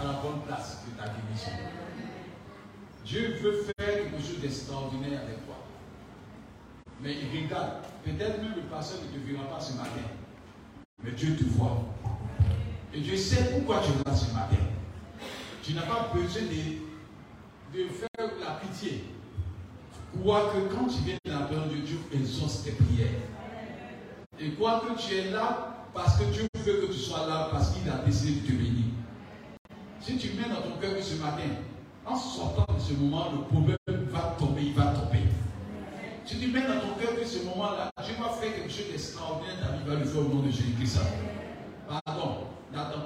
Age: 50-69